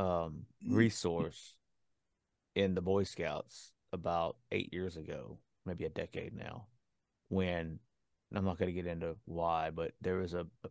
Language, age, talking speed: English, 30-49, 150 wpm